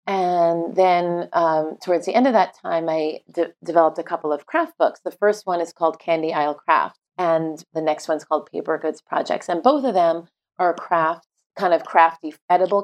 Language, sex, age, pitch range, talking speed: English, female, 30-49, 155-180 Hz, 200 wpm